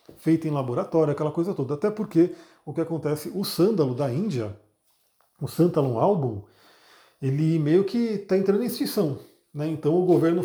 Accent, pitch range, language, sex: Brazilian, 140-175 Hz, Portuguese, male